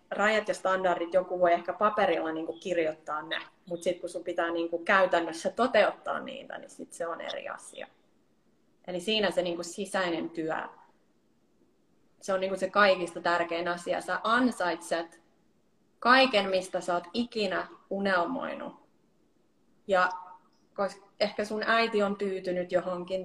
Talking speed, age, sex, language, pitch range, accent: 150 wpm, 20-39, female, Finnish, 180-205 Hz, native